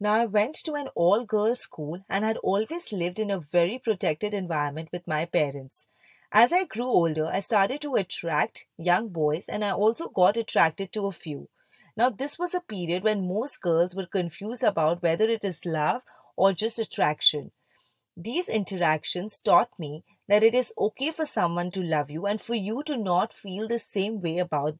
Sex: female